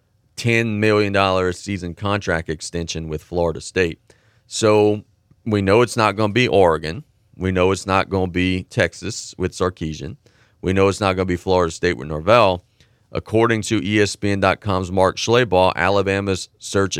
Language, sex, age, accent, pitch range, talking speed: English, male, 30-49, American, 90-110 Hz, 160 wpm